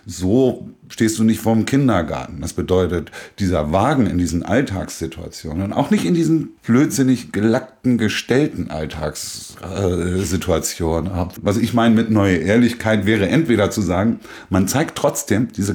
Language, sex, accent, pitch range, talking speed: German, male, German, 85-110 Hz, 140 wpm